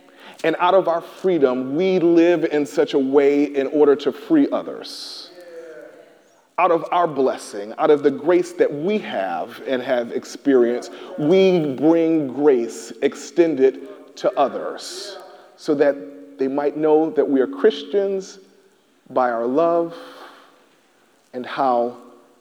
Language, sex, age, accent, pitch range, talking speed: English, male, 40-59, American, 120-165 Hz, 135 wpm